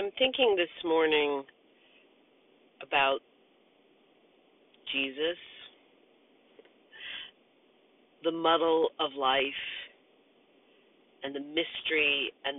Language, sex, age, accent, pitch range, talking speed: English, female, 40-59, American, 135-165 Hz, 65 wpm